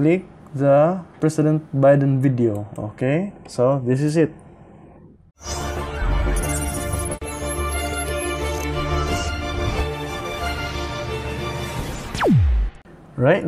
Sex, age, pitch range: male, 20-39, 110-150 Hz